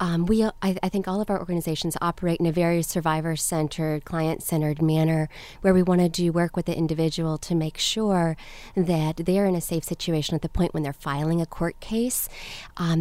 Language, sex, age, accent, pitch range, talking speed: English, female, 30-49, American, 160-185 Hz, 205 wpm